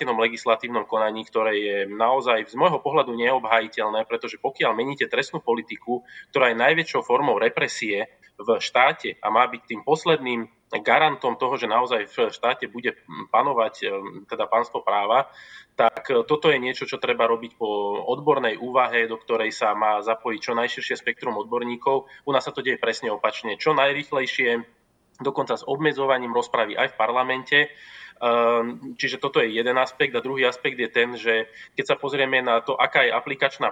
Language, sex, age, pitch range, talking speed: Slovak, male, 20-39, 115-135 Hz, 160 wpm